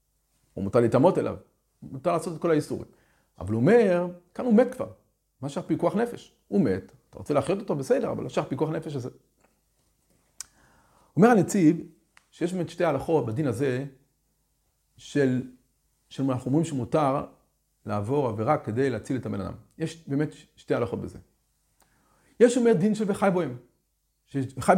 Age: 40-59